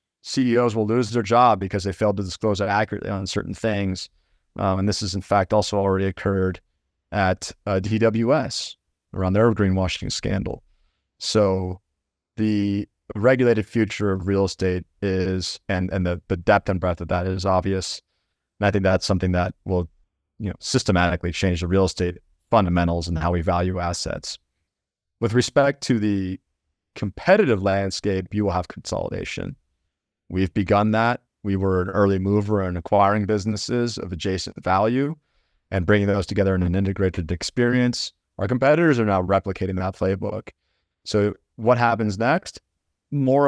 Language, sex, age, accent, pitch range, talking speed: English, male, 30-49, American, 90-105 Hz, 155 wpm